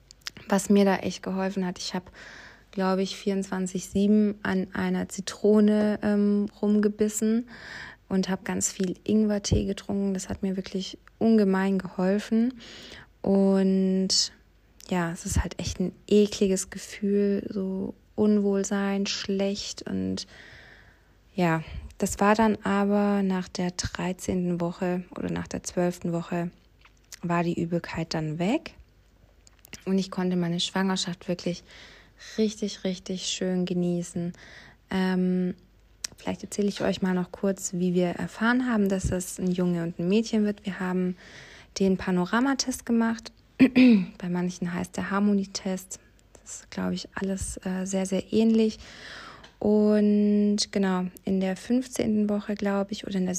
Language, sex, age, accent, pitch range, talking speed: German, female, 20-39, German, 180-205 Hz, 135 wpm